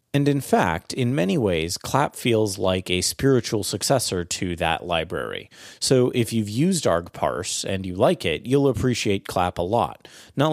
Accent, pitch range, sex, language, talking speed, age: American, 95-130 Hz, male, English, 170 wpm, 30-49